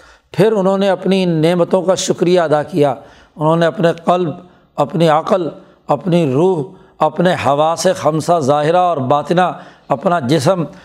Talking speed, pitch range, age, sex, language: 145 wpm, 160-190 Hz, 60-79, male, Urdu